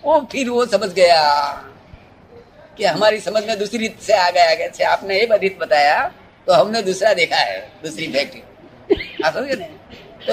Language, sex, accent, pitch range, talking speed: Hindi, female, native, 200-275 Hz, 140 wpm